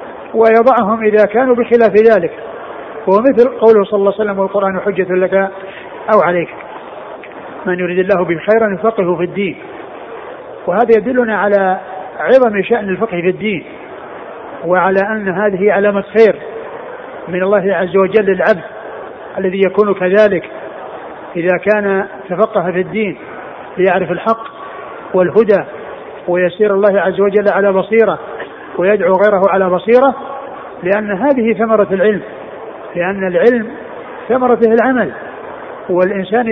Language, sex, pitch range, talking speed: Arabic, male, 190-225 Hz, 115 wpm